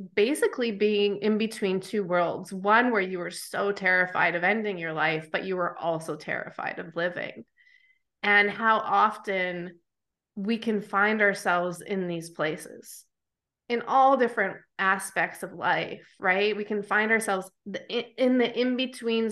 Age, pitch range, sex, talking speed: 20-39, 180-220 Hz, female, 145 wpm